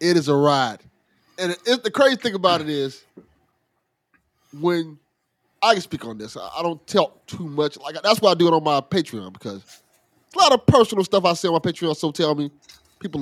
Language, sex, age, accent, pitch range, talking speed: English, male, 30-49, American, 150-205 Hz, 220 wpm